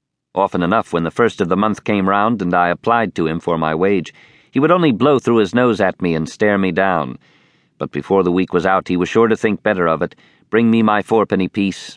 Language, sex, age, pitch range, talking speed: English, male, 50-69, 85-110 Hz, 250 wpm